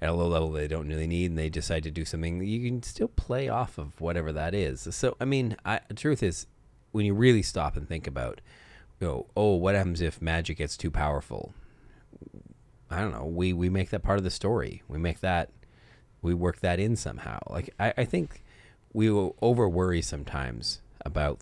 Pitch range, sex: 75-100 Hz, male